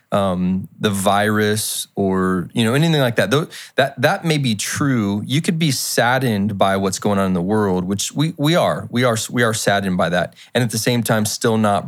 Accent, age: American, 20-39